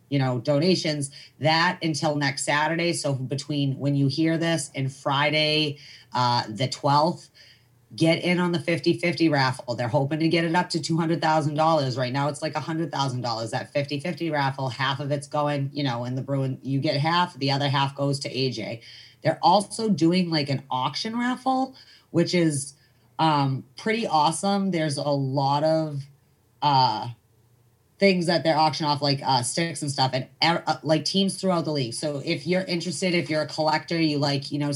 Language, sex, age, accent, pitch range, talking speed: English, female, 30-49, American, 135-165 Hz, 190 wpm